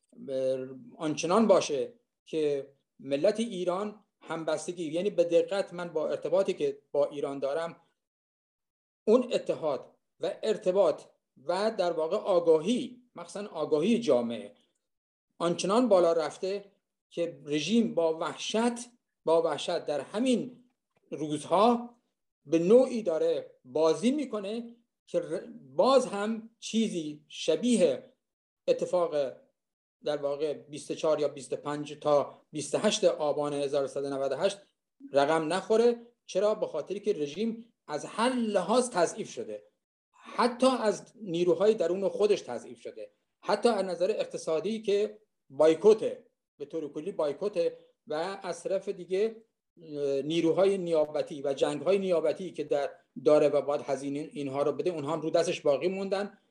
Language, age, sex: Persian, 50-69, male